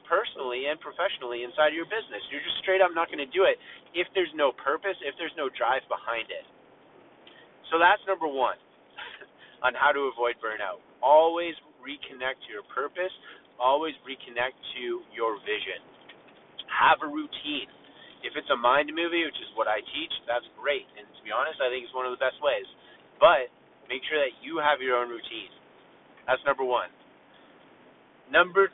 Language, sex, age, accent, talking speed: English, male, 30-49, American, 180 wpm